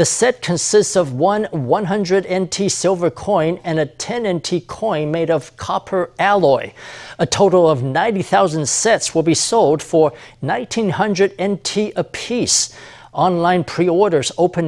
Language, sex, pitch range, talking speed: English, male, 155-195 Hz, 135 wpm